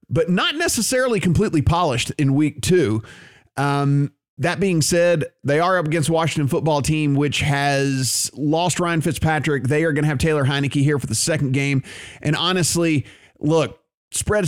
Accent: American